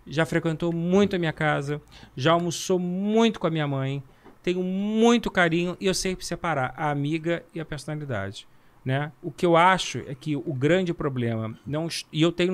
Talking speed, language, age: 185 wpm, Portuguese, 40-59